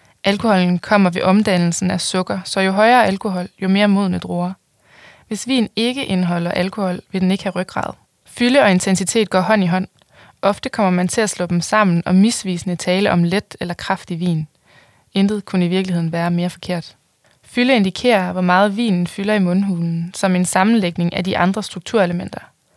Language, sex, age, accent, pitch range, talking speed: Danish, female, 20-39, native, 180-205 Hz, 180 wpm